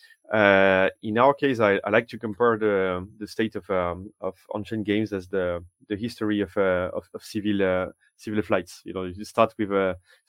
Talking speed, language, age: 205 wpm, English, 30-49